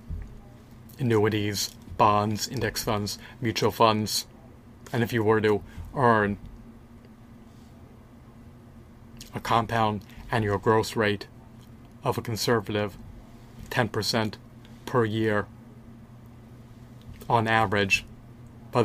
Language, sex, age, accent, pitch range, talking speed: English, male, 30-49, American, 110-120 Hz, 85 wpm